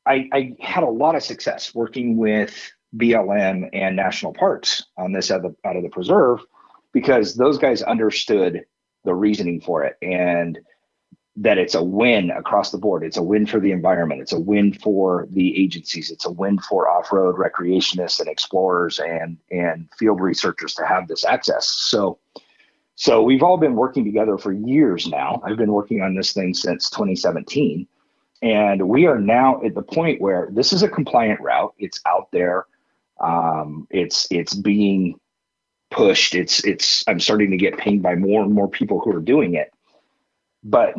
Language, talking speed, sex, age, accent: English, 175 wpm, male, 40-59, American